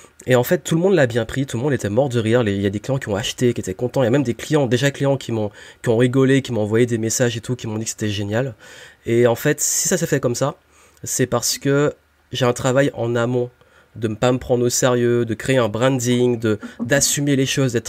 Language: French